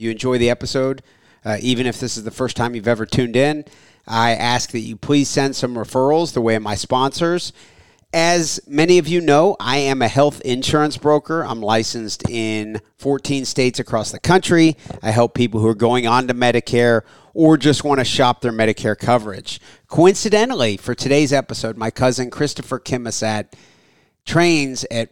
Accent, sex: American, male